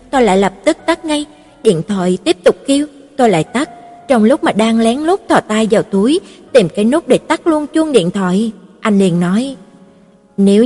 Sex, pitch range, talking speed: female, 210-275 Hz, 210 wpm